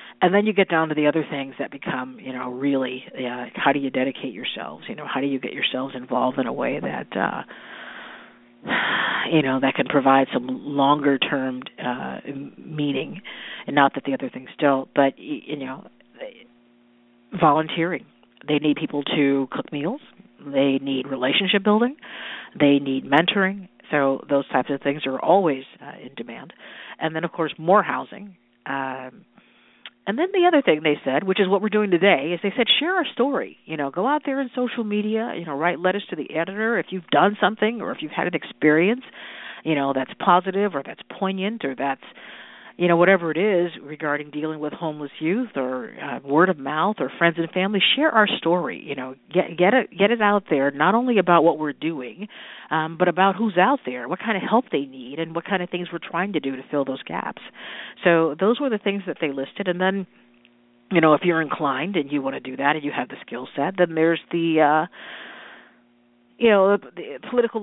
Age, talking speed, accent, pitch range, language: 50-69, 205 wpm, American, 135-195 Hz, English